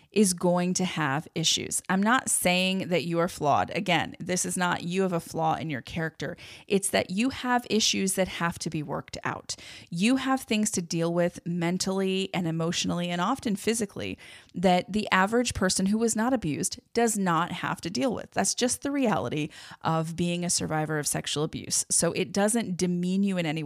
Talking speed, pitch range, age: 200 wpm, 165-215 Hz, 30-49